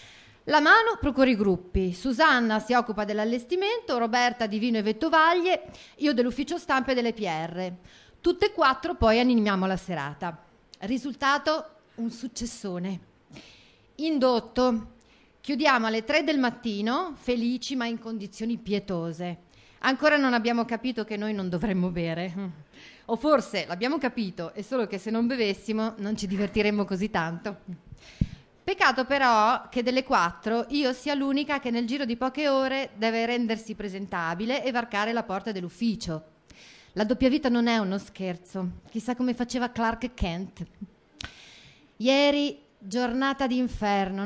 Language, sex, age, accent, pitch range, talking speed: Italian, female, 40-59, native, 200-265 Hz, 140 wpm